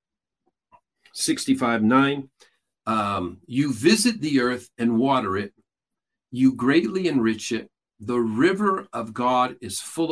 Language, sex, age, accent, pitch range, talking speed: English, male, 50-69, American, 110-140 Hz, 120 wpm